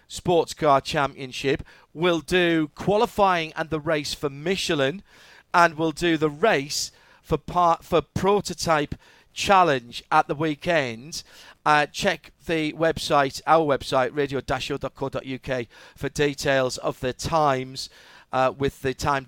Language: English